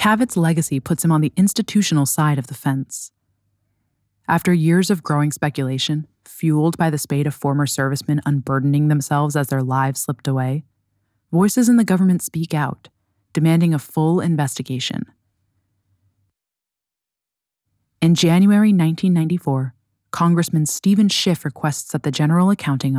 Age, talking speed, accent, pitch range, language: 20-39, 135 wpm, American, 130-170 Hz, English